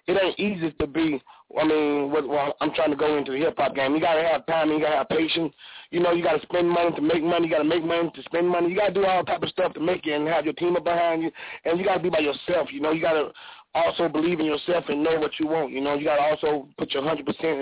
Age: 20-39